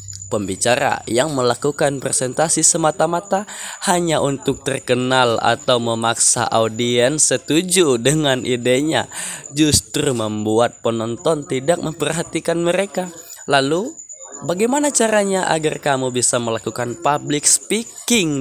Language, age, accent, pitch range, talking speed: Indonesian, 20-39, native, 120-155 Hz, 95 wpm